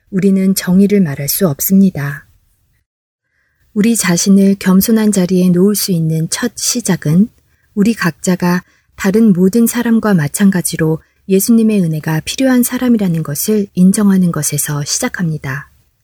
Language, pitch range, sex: Korean, 170-220 Hz, female